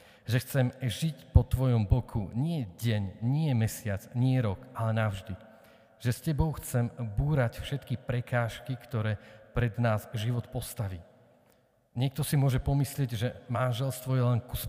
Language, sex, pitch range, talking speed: Slovak, male, 110-125 Hz, 145 wpm